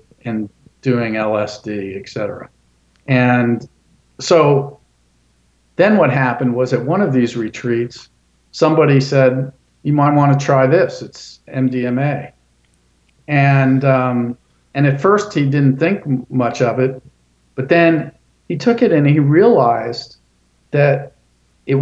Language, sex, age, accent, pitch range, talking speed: English, male, 50-69, American, 115-145 Hz, 130 wpm